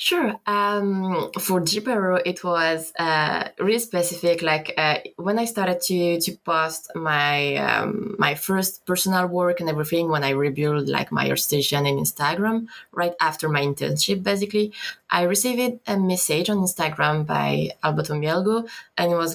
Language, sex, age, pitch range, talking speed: English, female, 20-39, 150-185 Hz, 155 wpm